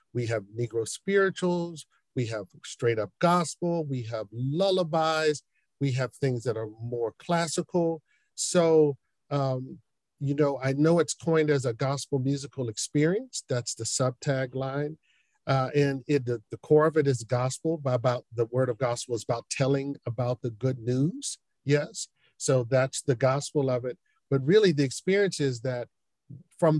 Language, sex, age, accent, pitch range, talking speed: English, male, 50-69, American, 125-160 Hz, 160 wpm